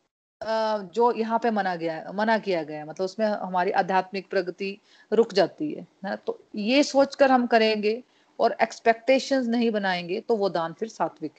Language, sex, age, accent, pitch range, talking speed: Hindi, female, 40-59, native, 180-225 Hz, 175 wpm